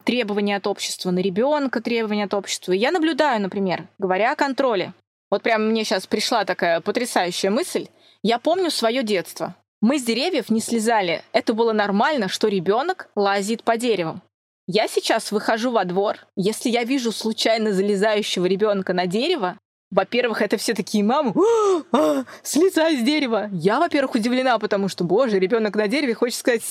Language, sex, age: Russian, female, 20-39